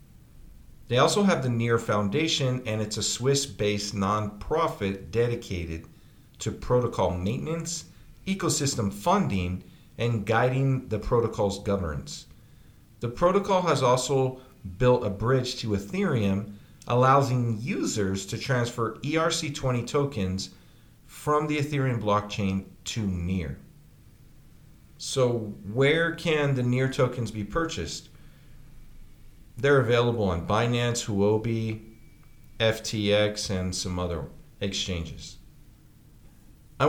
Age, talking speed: 50-69, 100 wpm